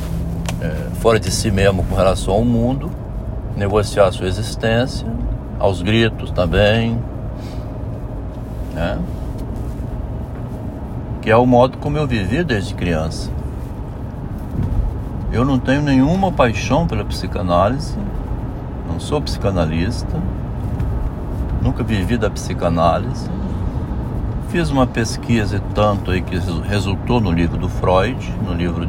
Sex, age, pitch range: male, 60-79, 90-120 Hz